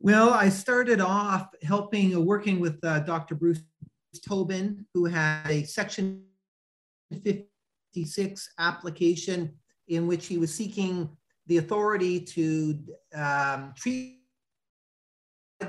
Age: 40-59